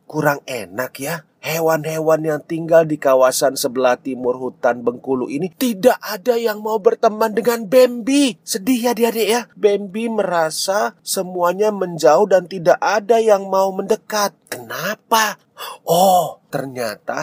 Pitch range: 145-220 Hz